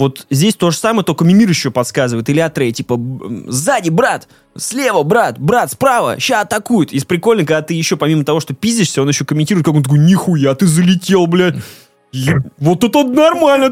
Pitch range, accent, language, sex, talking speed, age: 140-185 Hz, native, Russian, male, 190 wpm, 20-39